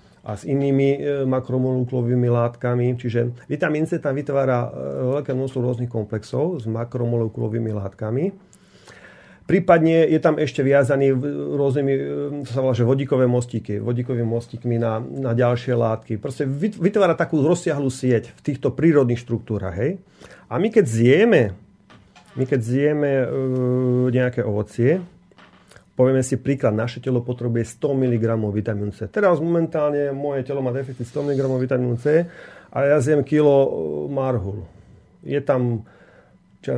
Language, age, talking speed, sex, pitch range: Slovak, 40-59, 135 wpm, male, 115-145 Hz